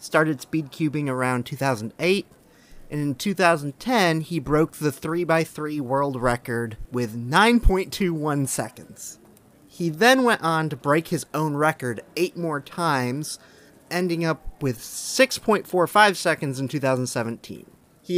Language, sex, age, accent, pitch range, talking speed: English, male, 30-49, American, 130-170 Hz, 120 wpm